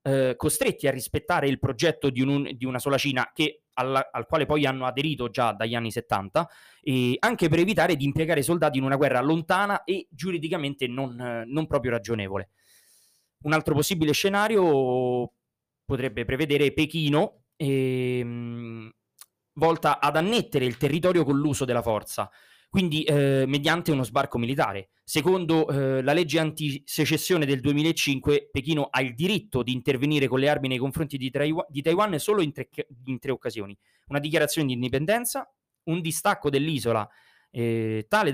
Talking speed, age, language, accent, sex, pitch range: 150 wpm, 20-39, Italian, native, male, 125-155 Hz